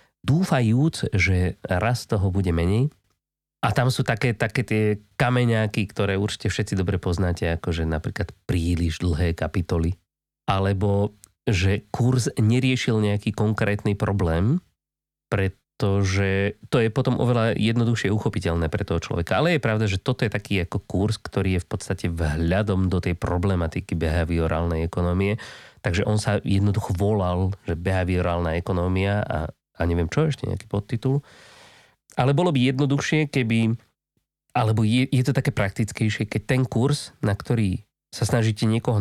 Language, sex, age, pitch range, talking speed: Slovak, male, 30-49, 95-125 Hz, 145 wpm